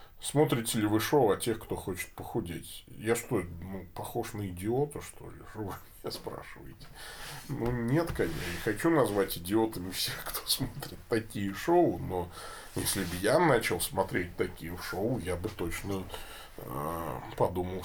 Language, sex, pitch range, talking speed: Russian, male, 90-120 Hz, 150 wpm